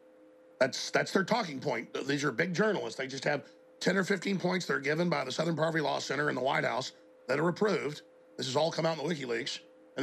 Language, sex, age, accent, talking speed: English, male, 40-59, American, 240 wpm